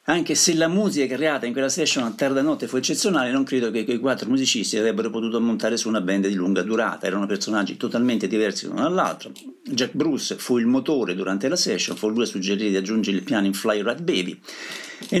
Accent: native